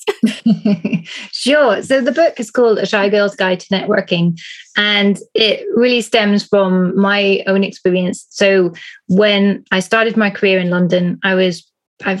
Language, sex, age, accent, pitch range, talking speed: English, female, 20-39, British, 185-215 Hz, 150 wpm